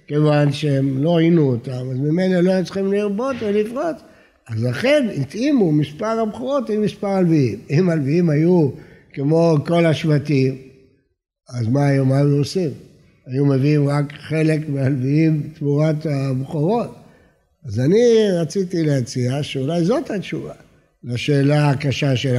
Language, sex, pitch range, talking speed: Hebrew, male, 140-205 Hz, 130 wpm